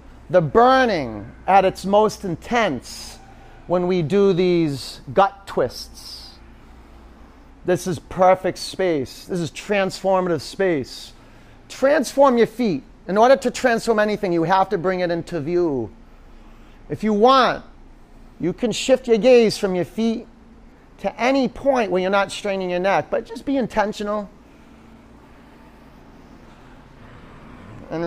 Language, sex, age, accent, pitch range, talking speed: English, male, 40-59, American, 135-205 Hz, 130 wpm